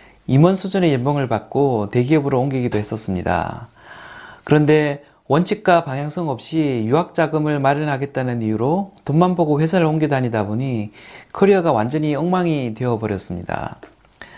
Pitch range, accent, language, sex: 125-170 Hz, native, Korean, male